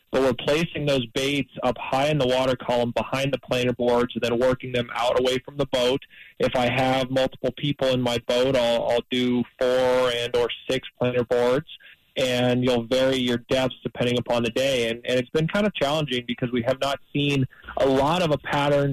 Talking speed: 215 wpm